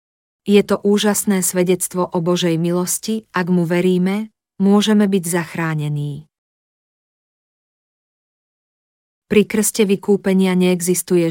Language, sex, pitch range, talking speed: Slovak, female, 175-195 Hz, 90 wpm